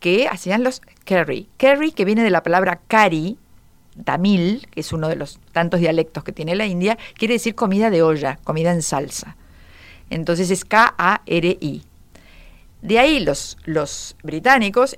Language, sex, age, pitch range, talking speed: Spanish, female, 50-69, 165-230 Hz, 155 wpm